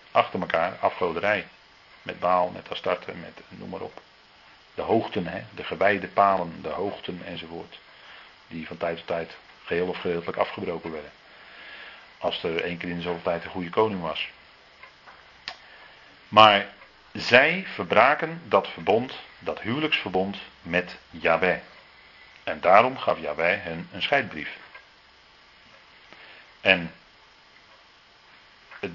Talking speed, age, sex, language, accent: 120 wpm, 40-59, male, Dutch, Dutch